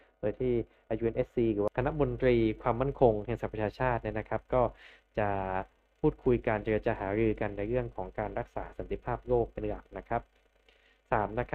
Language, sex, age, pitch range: Thai, male, 20-39, 110-135 Hz